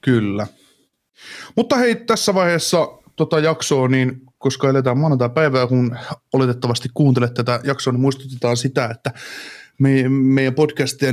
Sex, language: male, Finnish